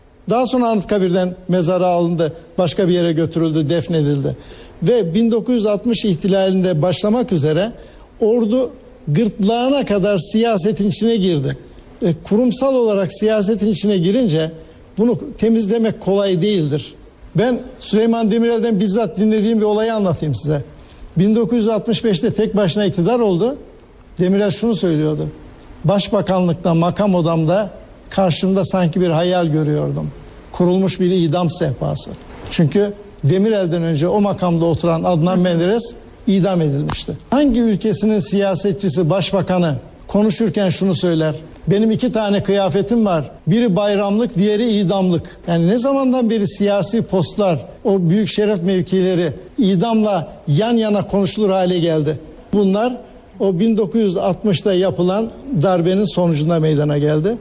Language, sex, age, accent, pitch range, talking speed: Turkish, male, 60-79, native, 175-215 Hz, 115 wpm